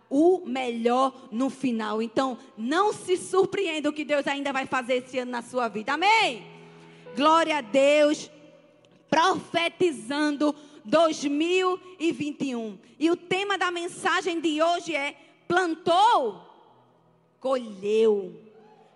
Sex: female